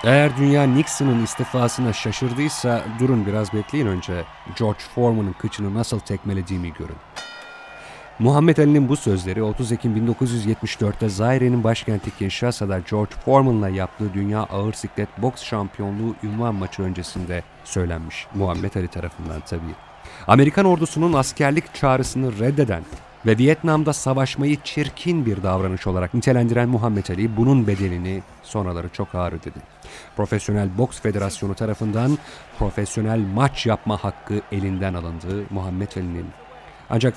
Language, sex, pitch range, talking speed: Turkish, male, 95-125 Hz, 120 wpm